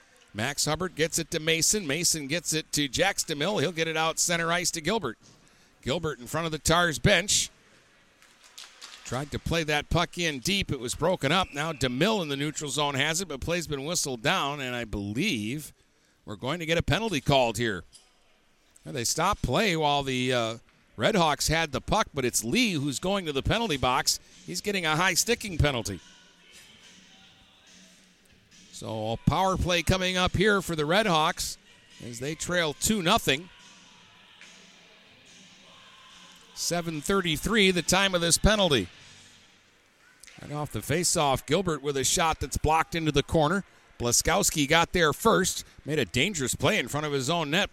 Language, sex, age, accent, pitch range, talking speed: English, male, 50-69, American, 140-175 Hz, 165 wpm